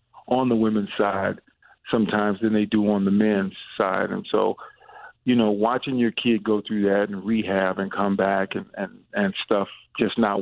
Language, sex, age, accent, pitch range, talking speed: English, male, 50-69, American, 105-120 Hz, 185 wpm